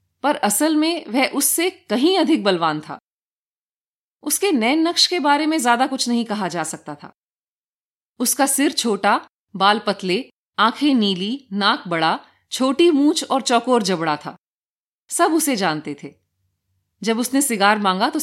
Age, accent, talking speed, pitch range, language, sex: 30-49, native, 150 wpm, 180-290 Hz, Hindi, female